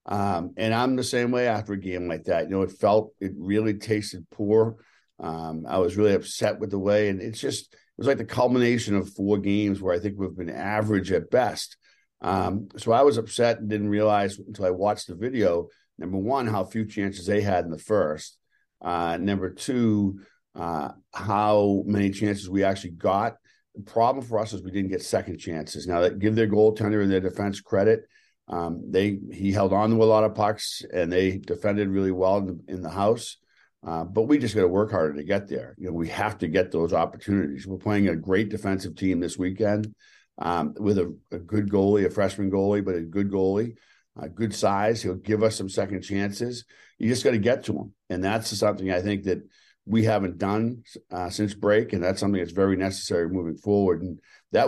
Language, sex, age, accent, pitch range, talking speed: English, male, 50-69, American, 95-110 Hz, 215 wpm